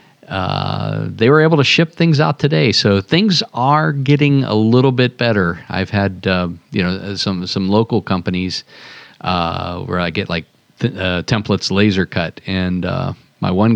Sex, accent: male, American